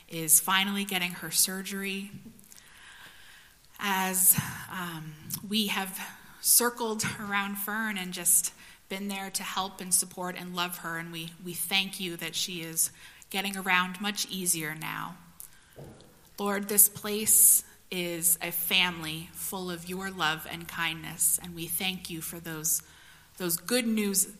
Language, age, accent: English, 20-39, American